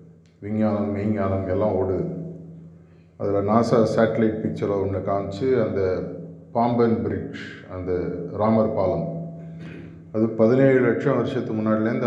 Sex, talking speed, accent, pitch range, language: male, 105 wpm, native, 95-130 Hz, Tamil